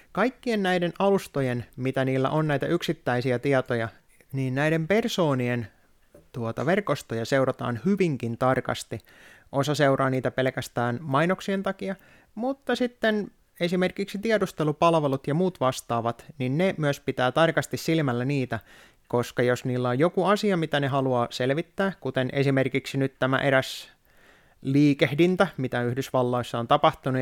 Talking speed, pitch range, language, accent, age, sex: 125 wpm, 125-170 Hz, Finnish, native, 20-39, male